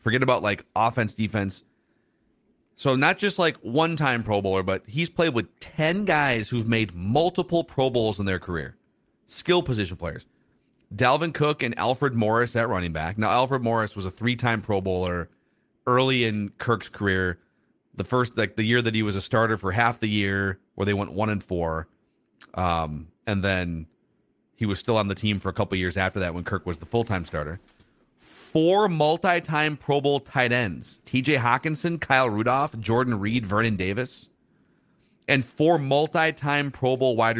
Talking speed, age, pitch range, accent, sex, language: 175 wpm, 40-59, 95-130 Hz, American, male, English